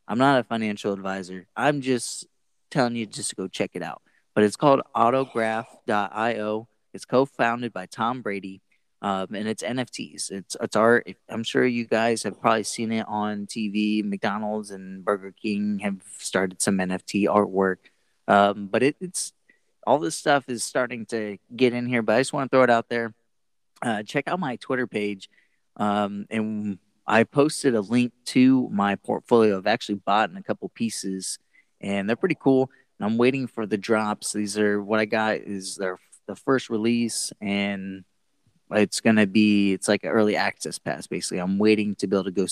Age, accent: 30-49, American